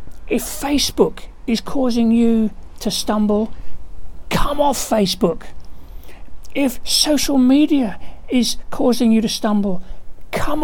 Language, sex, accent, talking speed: English, male, British, 105 wpm